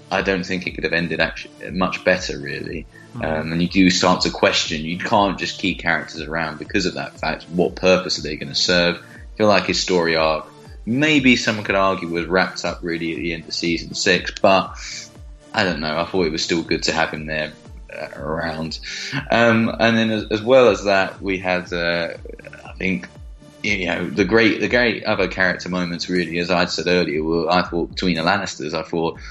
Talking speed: 215 wpm